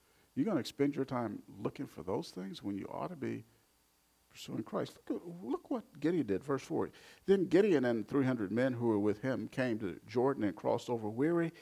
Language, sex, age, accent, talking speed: English, male, 50-69, American, 205 wpm